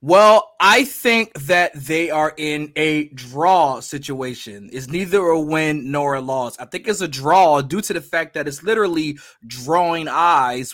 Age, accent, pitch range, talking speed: 20-39, American, 135-170 Hz, 175 wpm